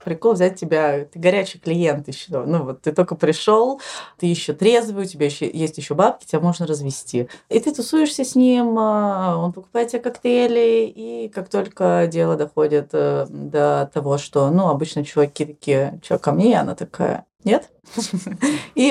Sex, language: female, Russian